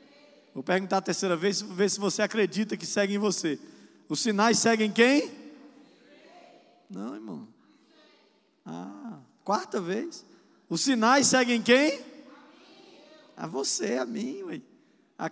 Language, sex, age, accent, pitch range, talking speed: Portuguese, male, 20-39, Brazilian, 195-275 Hz, 120 wpm